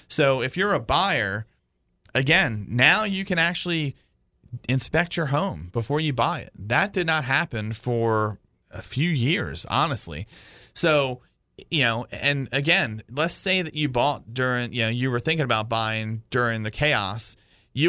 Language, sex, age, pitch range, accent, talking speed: English, male, 30-49, 110-145 Hz, American, 160 wpm